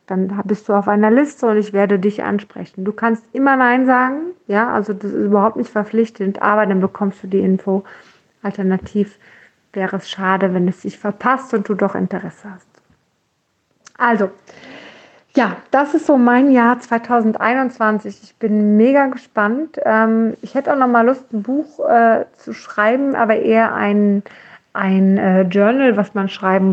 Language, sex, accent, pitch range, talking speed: German, female, German, 200-240 Hz, 165 wpm